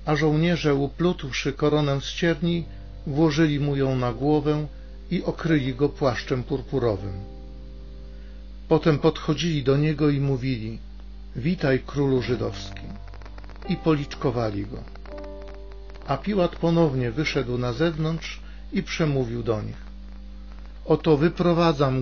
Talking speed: 110 wpm